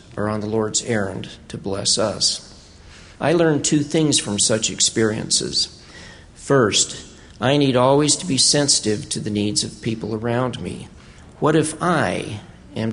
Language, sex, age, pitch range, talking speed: English, male, 50-69, 110-145 Hz, 155 wpm